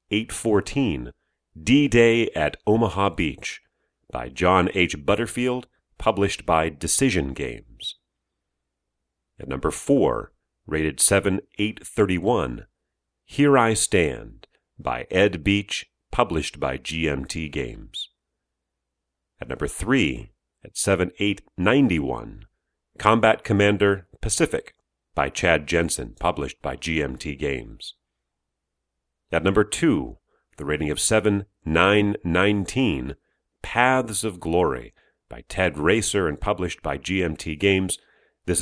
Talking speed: 100 wpm